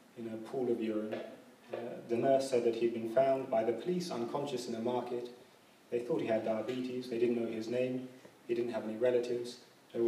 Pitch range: 115-125 Hz